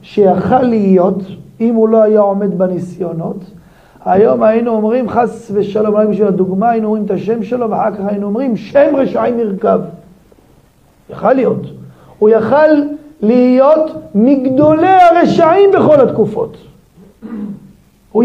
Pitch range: 190-290 Hz